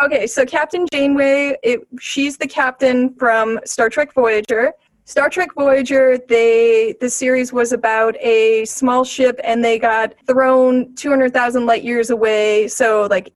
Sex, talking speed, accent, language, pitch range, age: female, 145 wpm, American, English, 220-275 Hz, 30-49